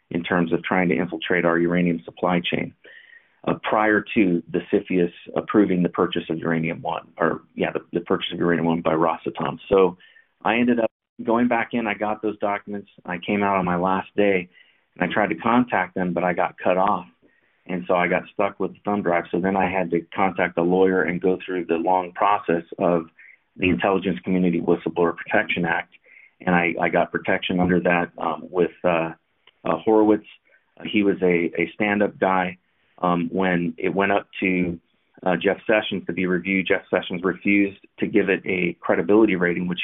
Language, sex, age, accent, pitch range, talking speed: English, male, 30-49, American, 85-100 Hz, 195 wpm